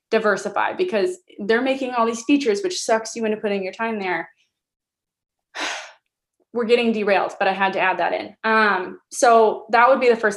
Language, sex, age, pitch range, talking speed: English, female, 20-39, 185-220 Hz, 185 wpm